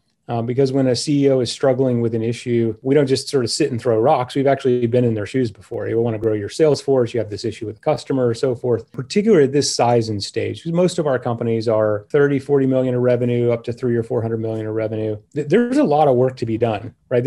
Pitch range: 115-140 Hz